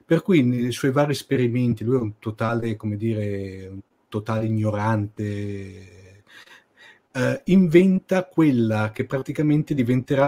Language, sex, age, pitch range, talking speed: Italian, male, 40-59, 115-140 Hz, 125 wpm